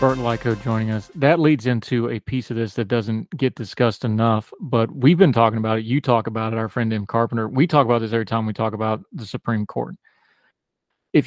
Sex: male